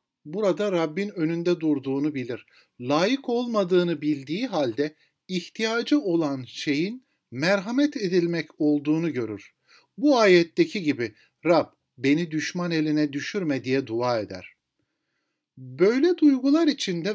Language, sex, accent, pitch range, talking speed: Turkish, male, native, 150-215 Hz, 105 wpm